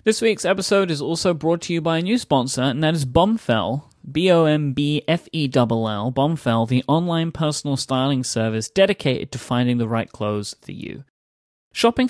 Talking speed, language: 160 wpm, English